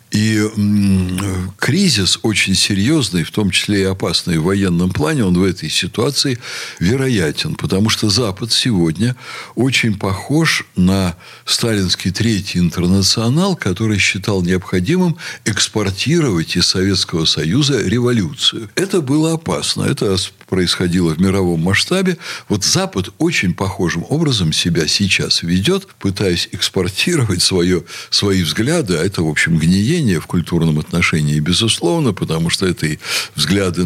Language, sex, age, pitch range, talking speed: Russian, male, 60-79, 90-120 Hz, 120 wpm